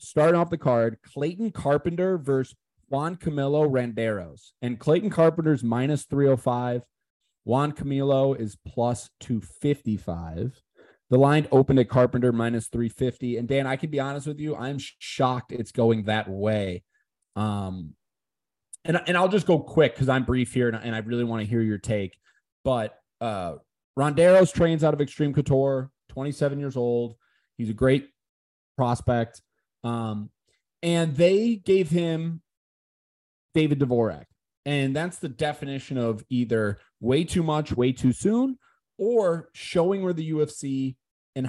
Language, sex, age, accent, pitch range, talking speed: English, male, 20-39, American, 120-155 Hz, 150 wpm